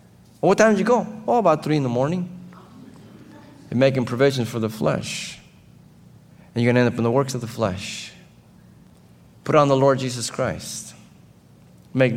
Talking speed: 180 wpm